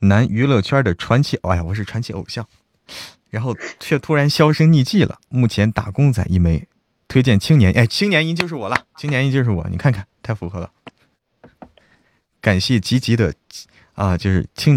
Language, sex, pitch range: Chinese, male, 95-130 Hz